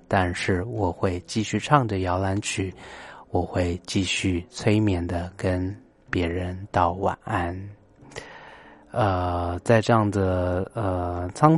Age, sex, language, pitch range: 20-39, male, Chinese, 95-125 Hz